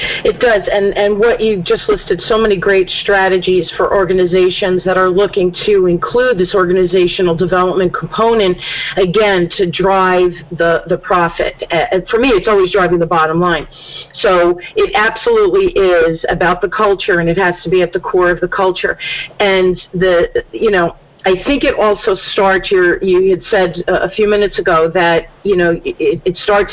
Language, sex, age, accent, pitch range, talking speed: English, female, 40-59, American, 180-225 Hz, 180 wpm